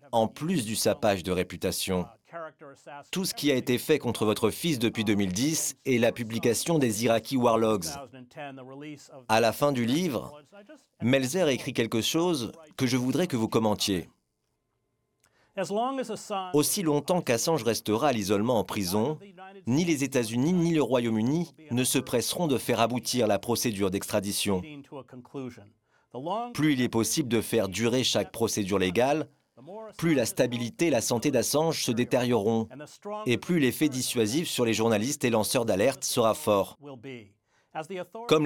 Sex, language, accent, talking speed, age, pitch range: male, French, French, 145 wpm, 40-59, 110-150 Hz